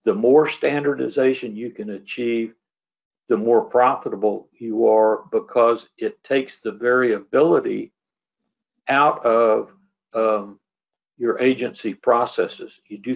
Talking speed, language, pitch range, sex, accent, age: 110 wpm, English, 115-165 Hz, male, American, 60-79